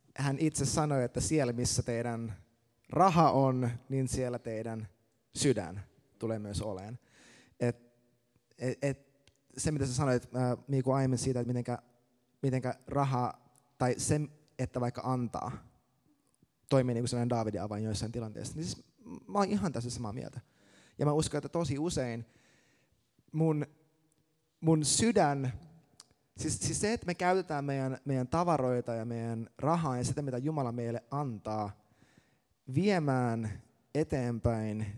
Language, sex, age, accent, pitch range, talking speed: Finnish, male, 20-39, native, 120-150 Hz, 130 wpm